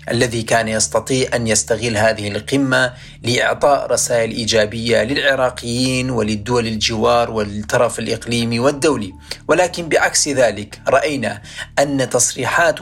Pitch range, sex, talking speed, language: 115-130 Hz, male, 105 wpm, Arabic